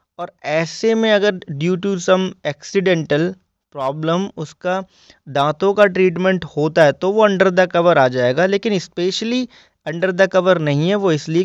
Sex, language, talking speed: male, Hindi, 155 wpm